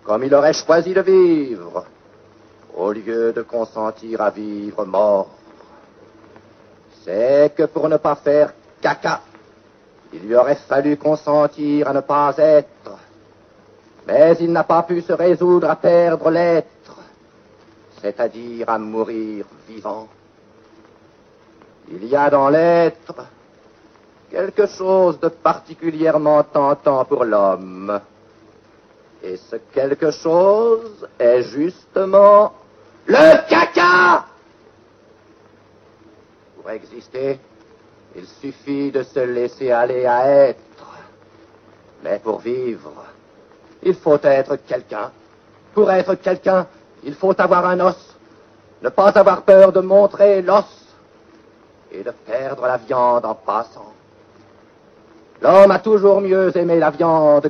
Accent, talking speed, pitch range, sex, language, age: French, 115 wpm, 115-180 Hz, male, French, 60-79